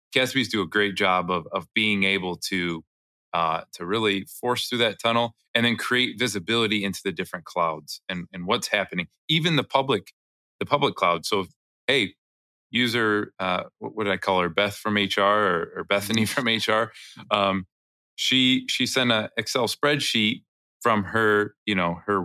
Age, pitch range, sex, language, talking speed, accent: 20-39, 90-115 Hz, male, English, 175 wpm, American